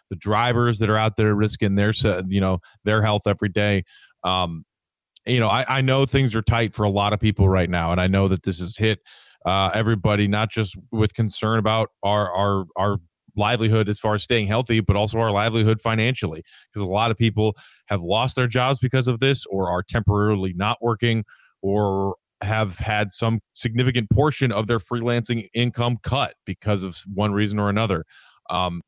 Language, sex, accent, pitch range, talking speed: English, male, American, 100-115 Hz, 195 wpm